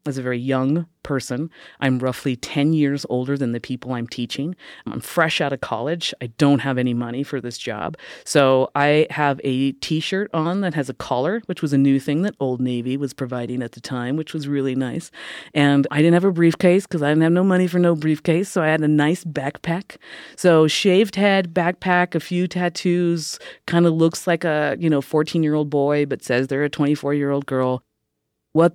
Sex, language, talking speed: female, English, 205 wpm